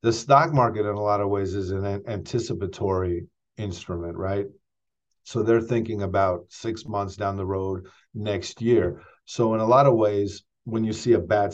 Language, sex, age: English, male, 50-69